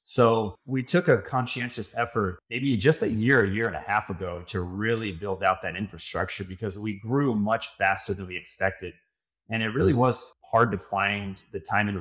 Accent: American